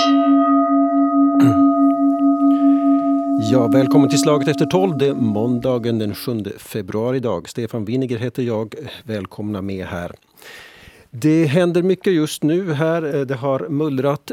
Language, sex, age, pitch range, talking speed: Swedish, male, 50-69, 110-140 Hz, 115 wpm